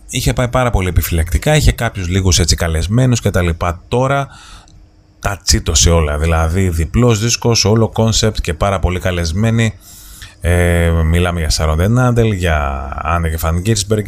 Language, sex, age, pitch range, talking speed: Greek, male, 30-49, 85-100 Hz, 150 wpm